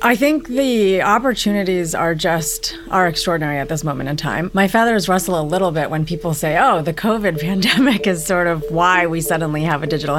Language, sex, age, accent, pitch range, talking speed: English, female, 30-49, American, 150-195 Hz, 205 wpm